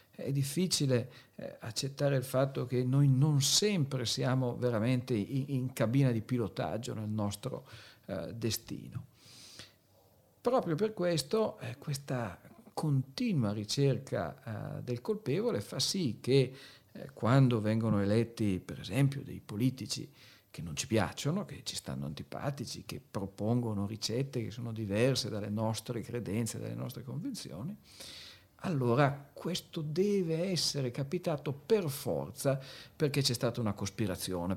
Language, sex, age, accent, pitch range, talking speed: Italian, male, 50-69, native, 110-140 Hz, 130 wpm